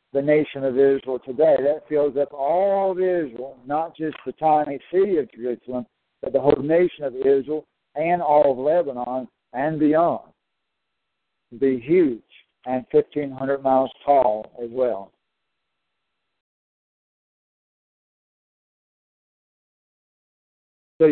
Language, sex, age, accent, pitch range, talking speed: English, male, 60-79, American, 130-155 Hz, 110 wpm